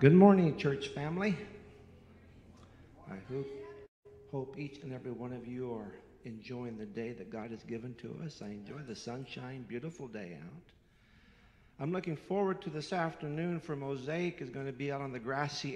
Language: English